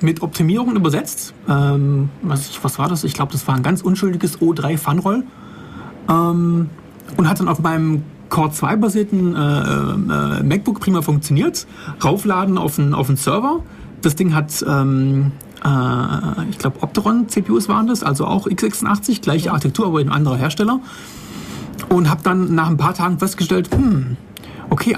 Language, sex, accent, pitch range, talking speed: German, male, German, 145-205 Hz, 155 wpm